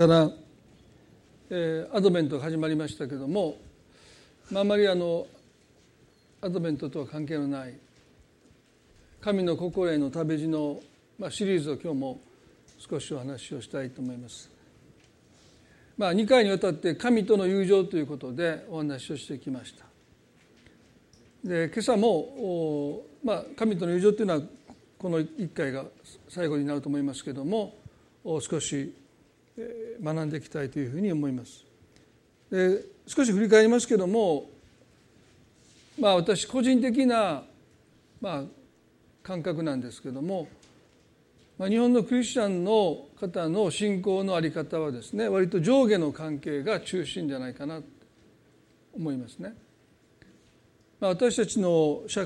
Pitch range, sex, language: 145-205 Hz, male, Japanese